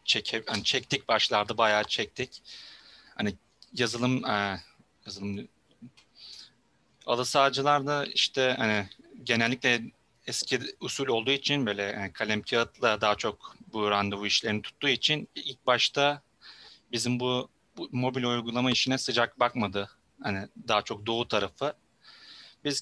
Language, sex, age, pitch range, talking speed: Turkish, male, 30-49, 105-130 Hz, 120 wpm